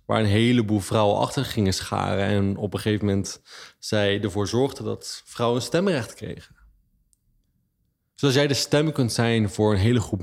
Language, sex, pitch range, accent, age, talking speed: Dutch, male, 95-115 Hz, Dutch, 20-39, 180 wpm